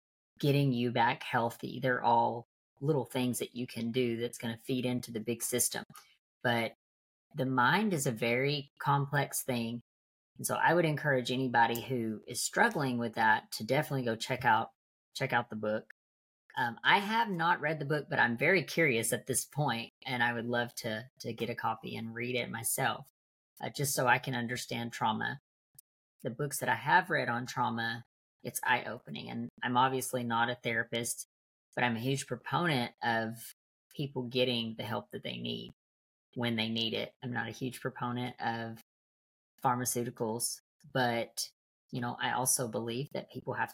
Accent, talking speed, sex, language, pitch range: American, 180 wpm, female, English, 115-130 Hz